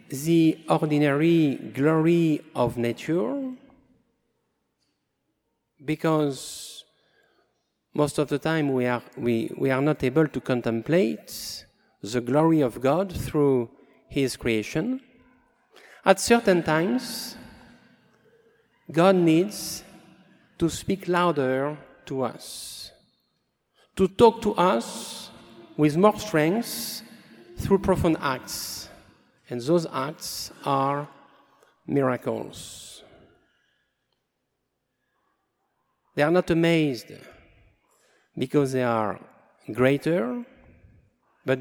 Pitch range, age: 140-210 Hz, 50-69